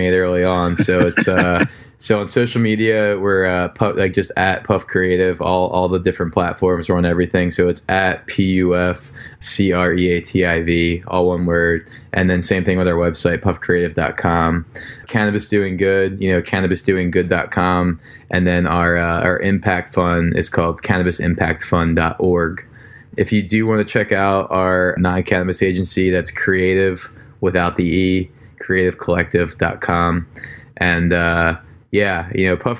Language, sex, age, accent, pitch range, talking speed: English, male, 20-39, American, 85-95 Hz, 165 wpm